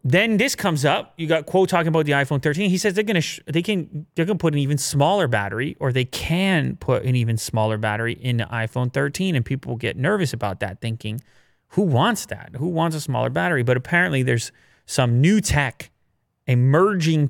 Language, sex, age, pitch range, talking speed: English, male, 30-49, 120-150 Hz, 210 wpm